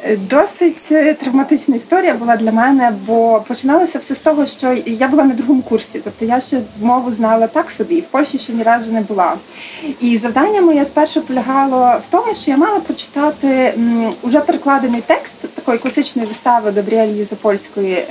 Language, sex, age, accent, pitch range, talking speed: Ukrainian, female, 30-49, native, 230-315 Hz, 165 wpm